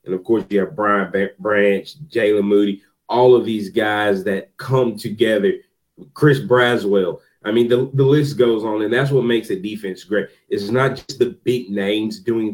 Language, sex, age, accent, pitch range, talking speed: English, male, 30-49, American, 105-130 Hz, 185 wpm